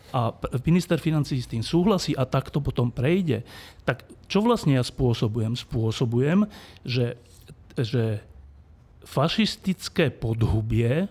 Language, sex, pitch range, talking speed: Slovak, male, 115-150 Hz, 110 wpm